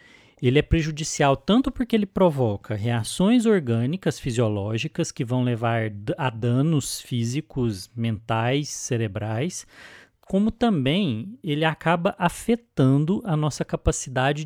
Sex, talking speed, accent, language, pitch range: male, 110 wpm, Brazilian, Portuguese, 115-160 Hz